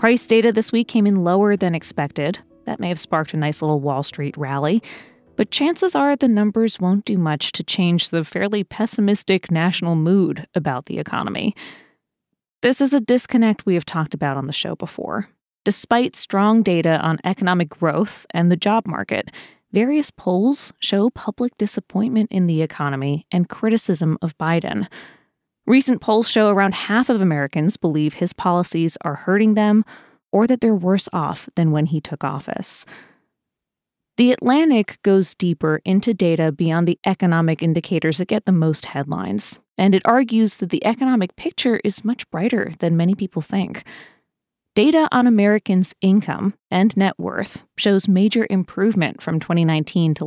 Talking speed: 160 wpm